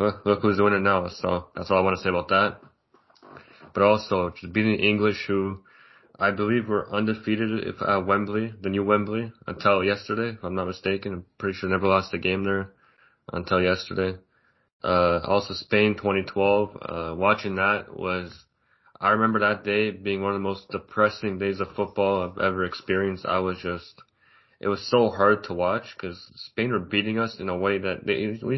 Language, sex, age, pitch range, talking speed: English, male, 20-39, 90-105 Hz, 195 wpm